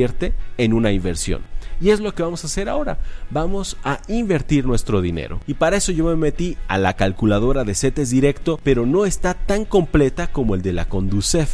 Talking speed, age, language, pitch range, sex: 200 wpm, 40-59, Spanish, 105-150 Hz, male